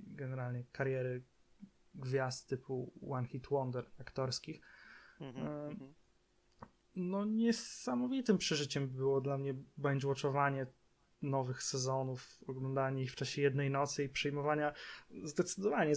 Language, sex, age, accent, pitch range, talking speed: Polish, male, 20-39, native, 135-160 Hz, 100 wpm